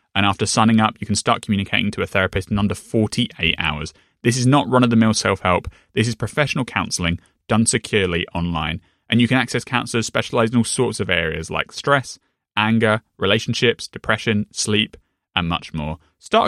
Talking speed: 175 wpm